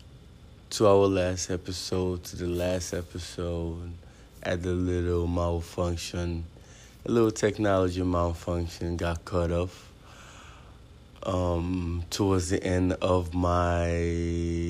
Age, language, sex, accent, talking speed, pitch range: 20-39, English, male, American, 100 wpm, 85-100 Hz